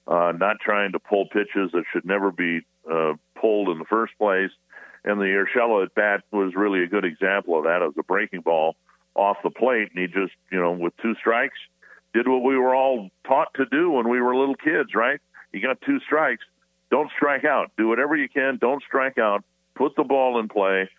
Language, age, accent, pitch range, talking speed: English, 50-69, American, 85-115 Hz, 220 wpm